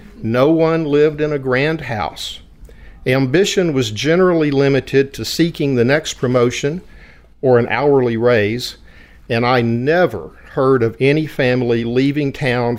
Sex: male